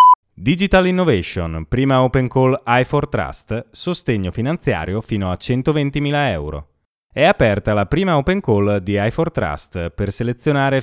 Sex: male